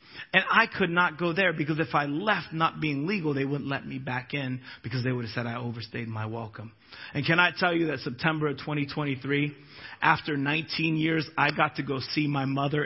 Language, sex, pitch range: English, male, 155-220 Hz